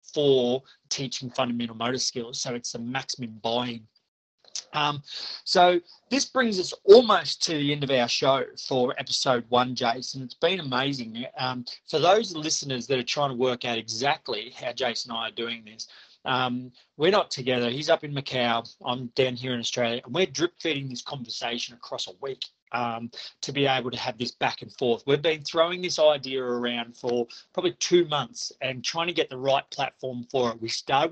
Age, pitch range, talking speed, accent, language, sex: 30-49, 125-150 Hz, 195 wpm, Australian, English, male